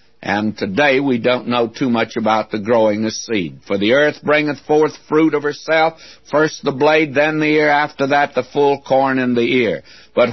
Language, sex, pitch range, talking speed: English, male, 125-160 Hz, 205 wpm